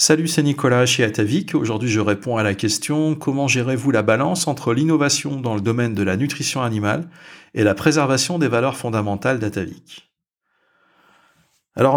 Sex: male